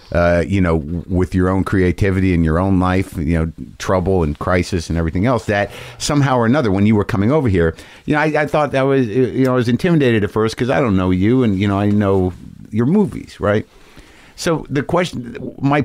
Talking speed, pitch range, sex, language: 225 wpm, 90-120 Hz, male, English